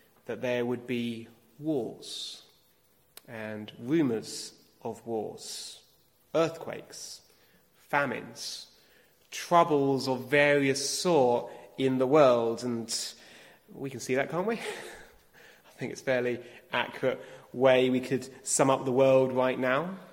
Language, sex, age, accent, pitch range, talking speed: English, male, 30-49, British, 120-165 Hz, 120 wpm